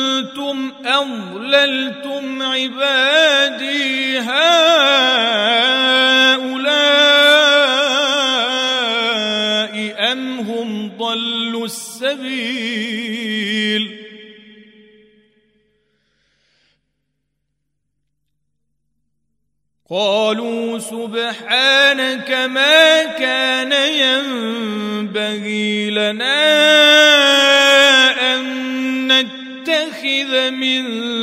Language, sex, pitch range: Arabic, male, 215-270 Hz